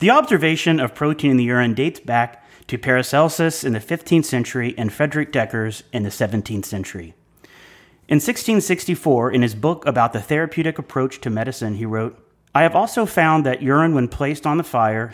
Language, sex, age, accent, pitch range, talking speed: English, male, 30-49, American, 110-150 Hz, 180 wpm